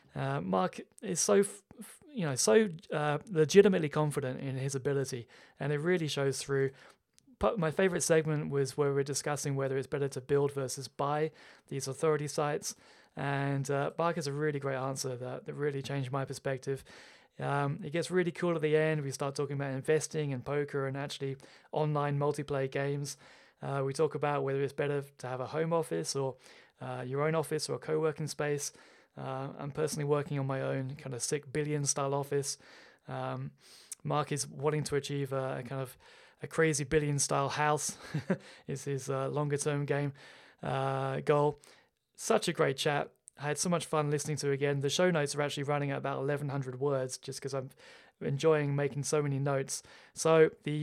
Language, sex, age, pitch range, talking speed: English, male, 20-39, 135-155 Hz, 190 wpm